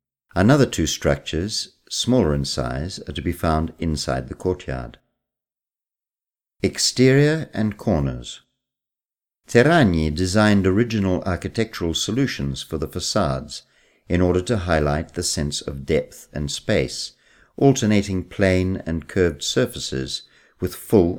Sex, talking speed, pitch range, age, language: male, 115 wpm, 75-105 Hz, 50-69, Italian